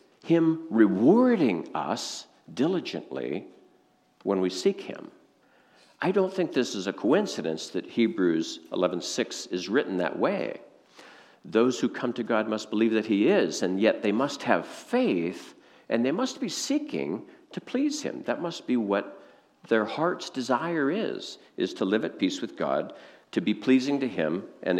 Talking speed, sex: 160 wpm, male